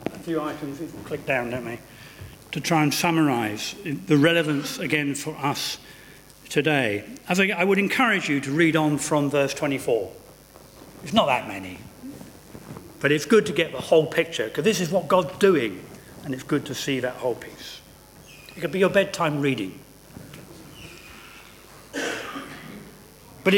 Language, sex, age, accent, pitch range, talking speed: English, male, 50-69, British, 135-170 Hz, 165 wpm